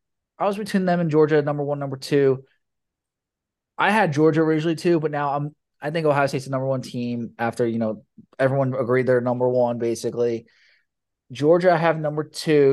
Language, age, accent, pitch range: English, 20-39, American, 125-160 Hz